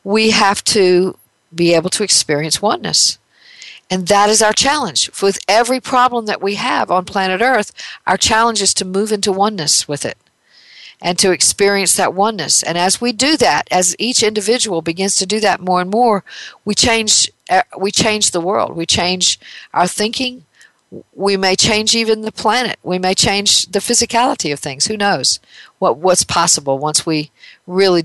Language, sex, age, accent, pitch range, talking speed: English, female, 50-69, American, 170-215 Hz, 175 wpm